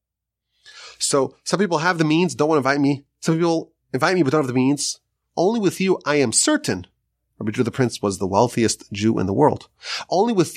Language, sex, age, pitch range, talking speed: English, male, 30-49, 110-145 Hz, 220 wpm